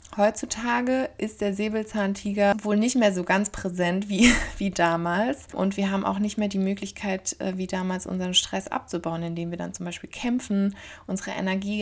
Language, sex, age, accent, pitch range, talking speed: German, female, 20-39, German, 180-200 Hz, 175 wpm